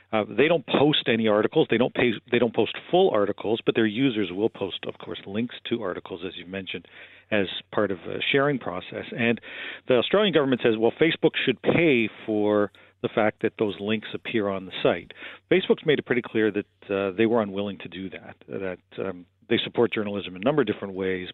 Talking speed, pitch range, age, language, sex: 210 wpm, 95-120 Hz, 50-69, English, male